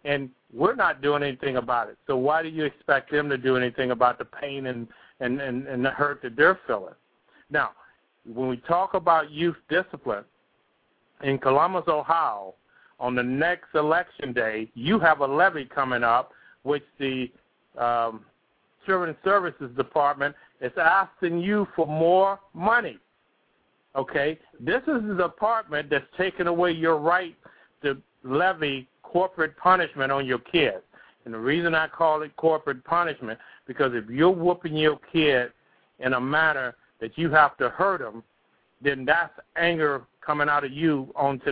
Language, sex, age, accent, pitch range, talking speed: English, male, 50-69, American, 135-175 Hz, 155 wpm